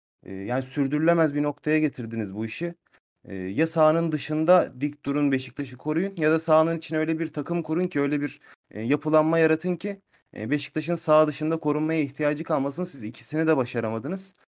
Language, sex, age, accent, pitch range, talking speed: Turkish, male, 30-49, native, 130-150 Hz, 155 wpm